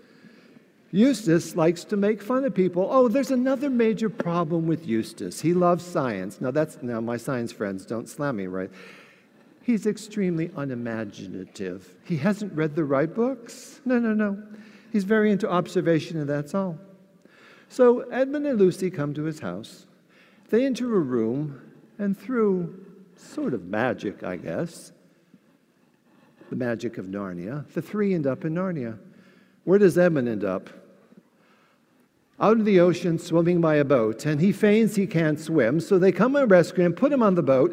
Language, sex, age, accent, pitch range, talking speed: English, male, 60-79, American, 150-210 Hz, 165 wpm